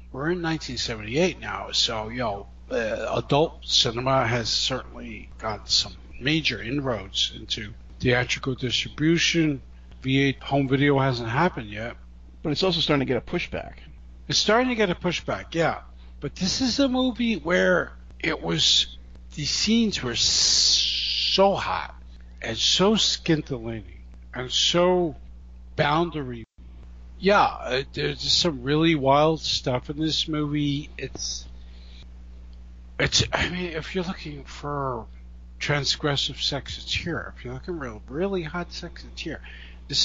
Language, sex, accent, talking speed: English, male, American, 135 wpm